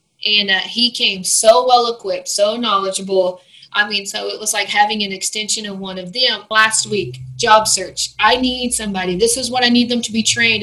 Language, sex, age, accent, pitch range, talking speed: English, female, 20-39, American, 195-230 Hz, 215 wpm